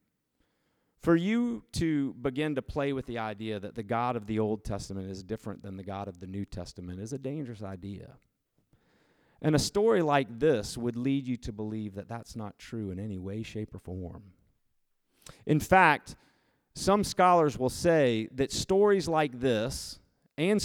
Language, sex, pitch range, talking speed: English, male, 110-175 Hz, 175 wpm